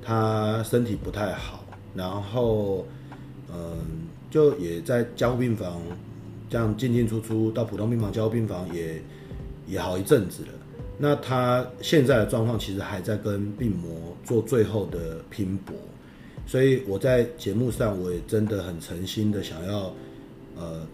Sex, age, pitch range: male, 30-49, 90-120 Hz